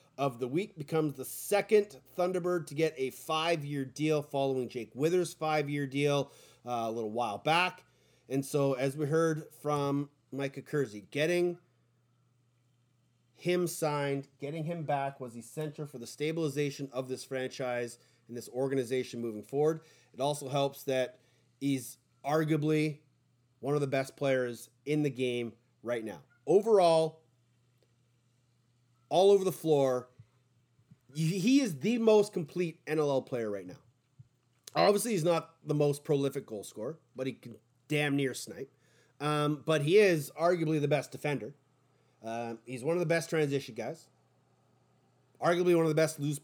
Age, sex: 30-49, male